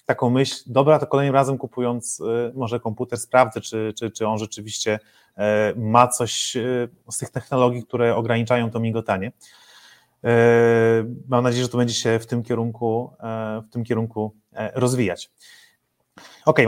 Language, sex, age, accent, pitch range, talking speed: Polish, male, 30-49, native, 115-130 Hz, 130 wpm